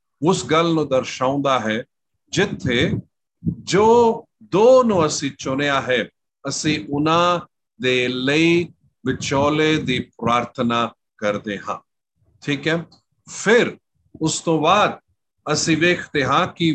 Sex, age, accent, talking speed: male, 50-69, native, 75 wpm